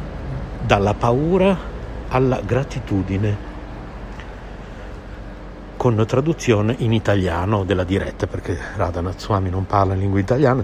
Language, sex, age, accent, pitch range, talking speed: Italian, male, 60-79, native, 95-120 Hz, 100 wpm